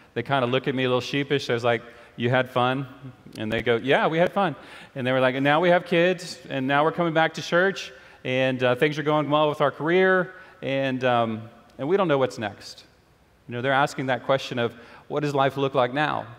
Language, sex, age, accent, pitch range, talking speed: English, male, 30-49, American, 125-165 Hz, 250 wpm